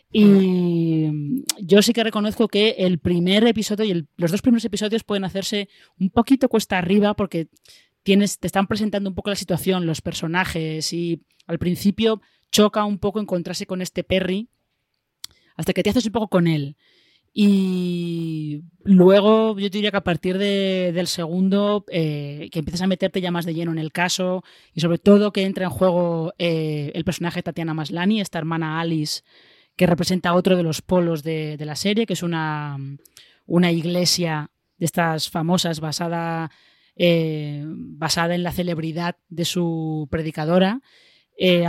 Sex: female